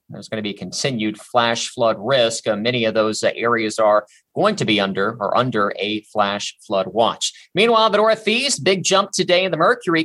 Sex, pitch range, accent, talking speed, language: male, 120-165 Hz, American, 205 wpm, English